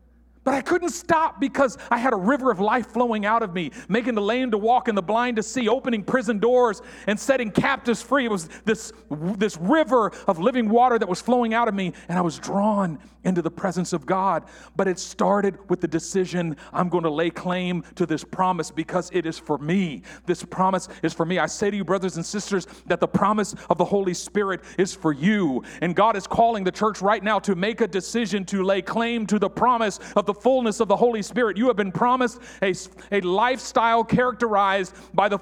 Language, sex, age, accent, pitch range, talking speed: English, male, 40-59, American, 185-250 Hz, 225 wpm